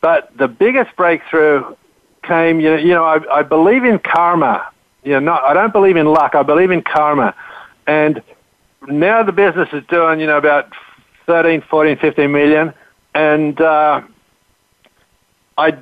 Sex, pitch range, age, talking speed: male, 145-175 Hz, 60-79, 160 wpm